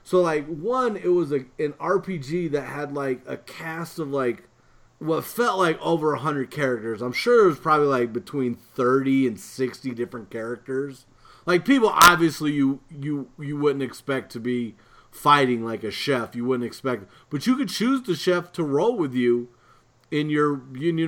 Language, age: English, 30-49